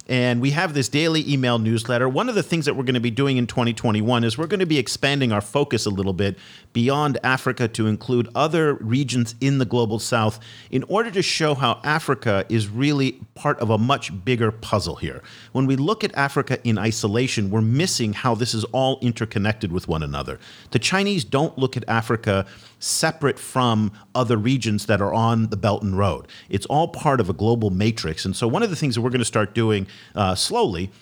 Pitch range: 110-135 Hz